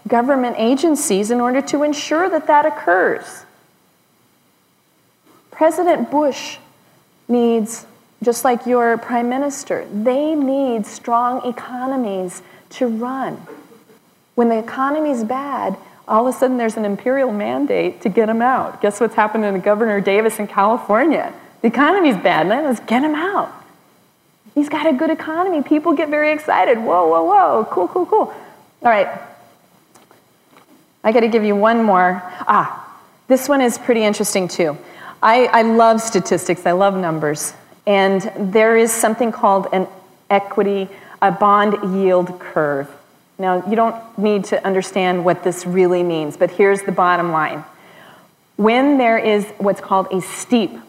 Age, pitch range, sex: 30-49, 190-255 Hz, female